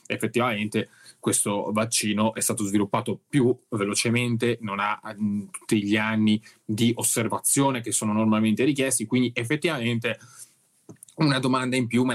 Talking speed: 130 wpm